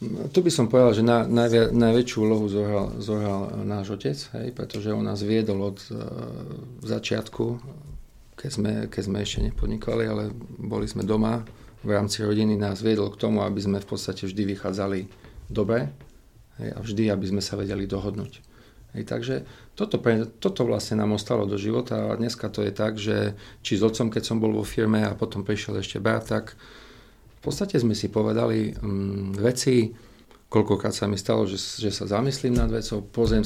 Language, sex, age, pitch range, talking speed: Slovak, male, 40-59, 105-115 Hz, 180 wpm